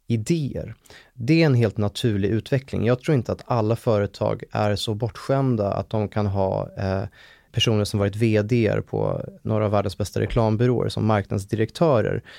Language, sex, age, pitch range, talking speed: English, male, 20-39, 105-125 Hz, 160 wpm